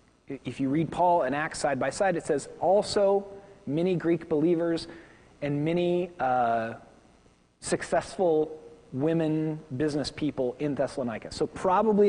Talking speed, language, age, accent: 130 wpm, English, 40-59, American